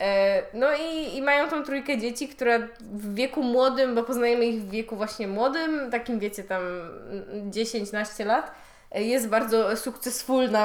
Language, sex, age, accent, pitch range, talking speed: Polish, female, 20-39, native, 220-275 Hz, 145 wpm